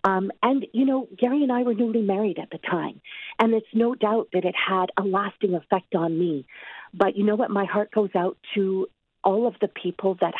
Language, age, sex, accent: English, 50-69, female, American